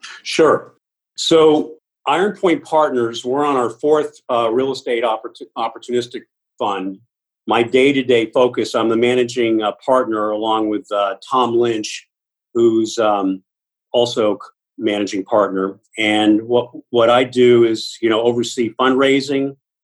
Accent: American